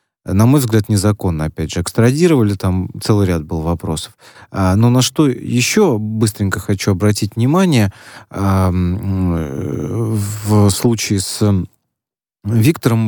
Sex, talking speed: male, 110 wpm